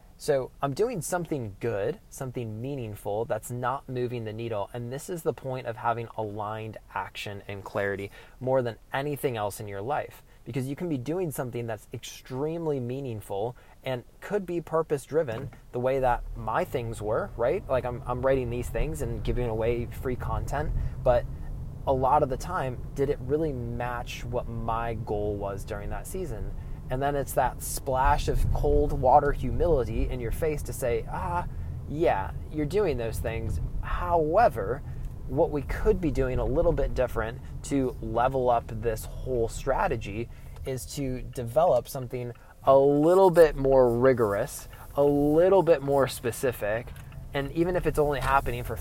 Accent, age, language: American, 20-39, English